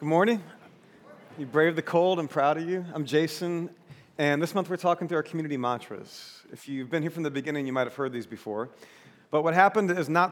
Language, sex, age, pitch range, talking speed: English, male, 40-59, 135-170 Hz, 225 wpm